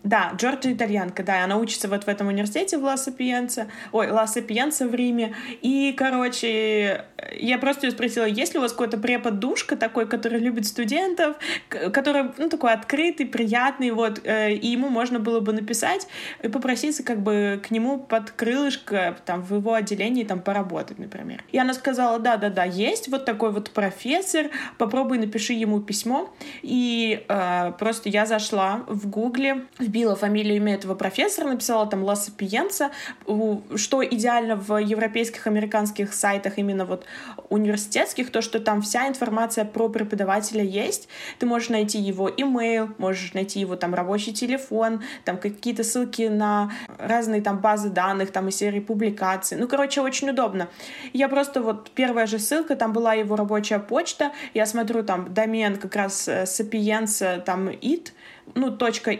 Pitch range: 205-255 Hz